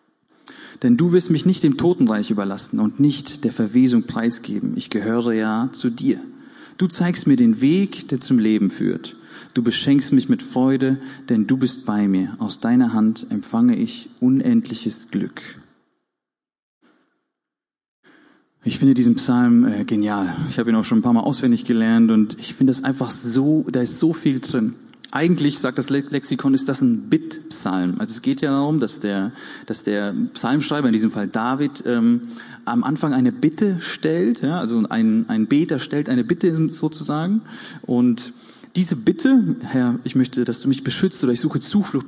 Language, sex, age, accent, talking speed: German, male, 40-59, German, 170 wpm